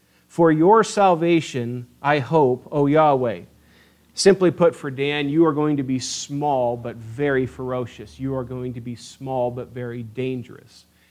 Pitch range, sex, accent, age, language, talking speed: 110-155 Hz, male, American, 40-59, English, 155 wpm